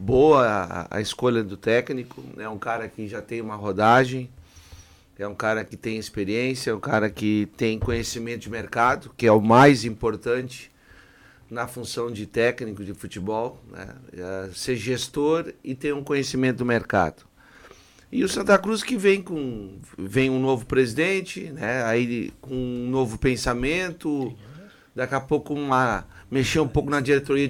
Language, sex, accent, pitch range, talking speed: Portuguese, male, Brazilian, 115-150 Hz, 165 wpm